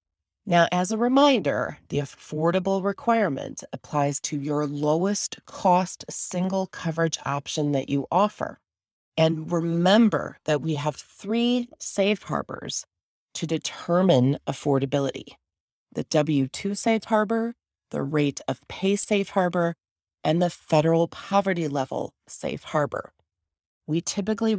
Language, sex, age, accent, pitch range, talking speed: English, female, 30-49, American, 145-195 Hz, 115 wpm